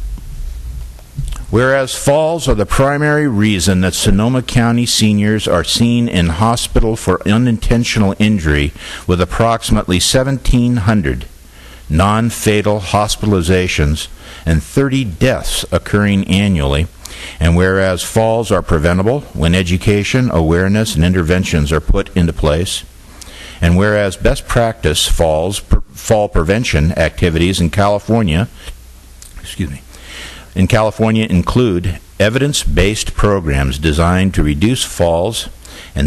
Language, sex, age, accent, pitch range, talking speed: English, male, 60-79, American, 80-105 Hz, 110 wpm